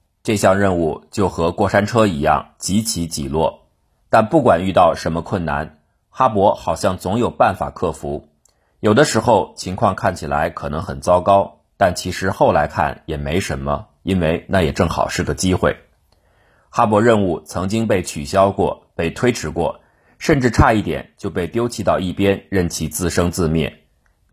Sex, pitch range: male, 80-110 Hz